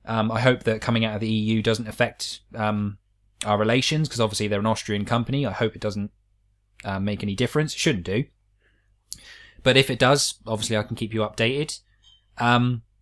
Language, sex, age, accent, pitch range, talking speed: English, male, 20-39, British, 105-125 Hz, 195 wpm